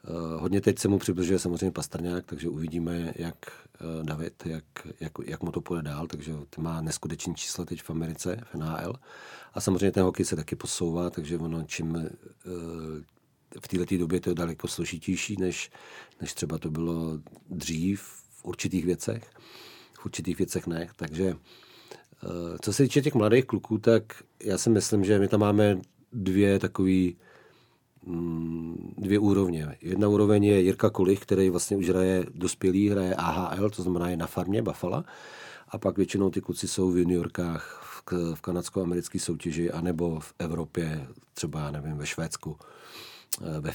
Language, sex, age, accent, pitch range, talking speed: Czech, male, 40-59, native, 85-95 Hz, 160 wpm